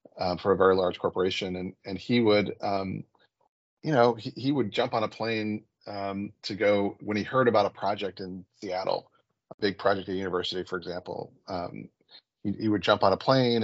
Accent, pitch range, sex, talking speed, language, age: American, 100-115 Hz, male, 200 wpm, English, 30-49